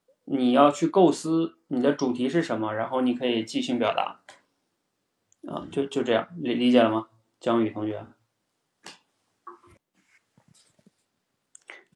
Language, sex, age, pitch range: Chinese, male, 20-39, 125-195 Hz